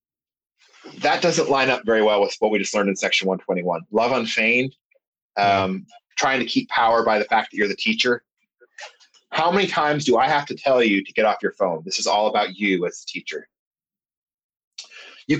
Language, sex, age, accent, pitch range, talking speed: English, male, 30-49, American, 115-150 Hz, 200 wpm